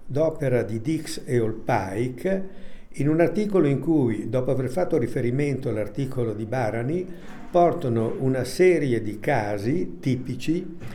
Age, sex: 60-79, male